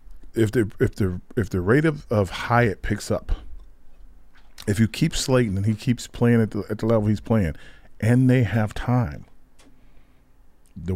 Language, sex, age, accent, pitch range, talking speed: English, male, 40-59, American, 100-150 Hz, 180 wpm